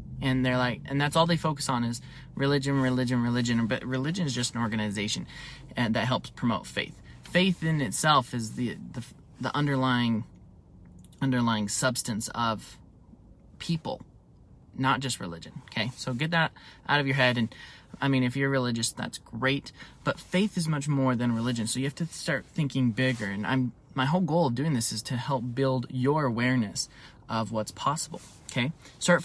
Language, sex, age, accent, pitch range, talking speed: English, male, 20-39, American, 120-145 Hz, 180 wpm